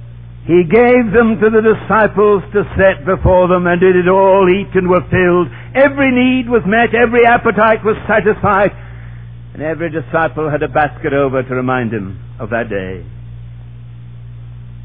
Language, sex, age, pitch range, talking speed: English, male, 60-79, 120-185 Hz, 160 wpm